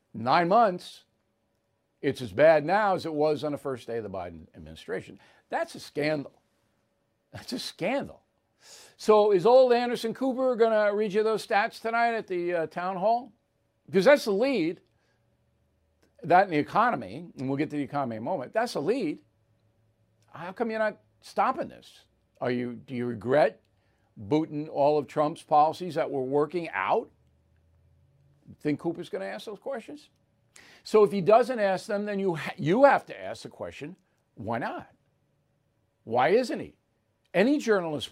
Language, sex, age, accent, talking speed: English, male, 60-79, American, 170 wpm